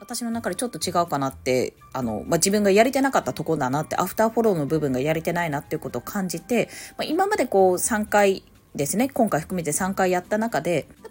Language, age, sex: Japanese, 20-39, female